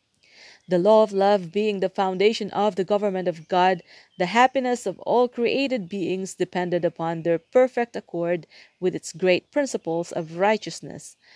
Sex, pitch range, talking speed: female, 180-220 Hz, 155 wpm